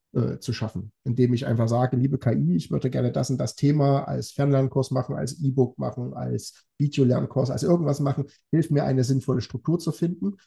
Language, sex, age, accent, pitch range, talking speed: German, male, 50-69, German, 125-150 Hz, 190 wpm